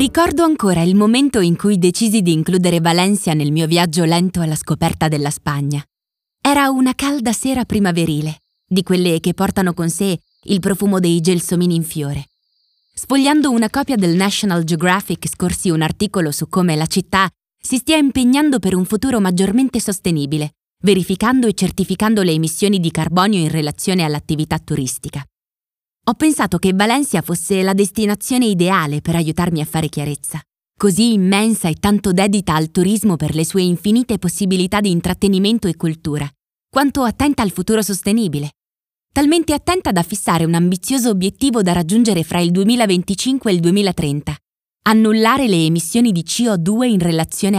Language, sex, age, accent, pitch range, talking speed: Italian, female, 20-39, native, 165-215 Hz, 155 wpm